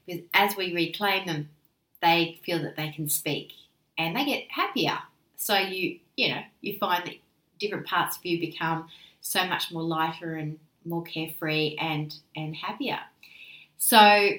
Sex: female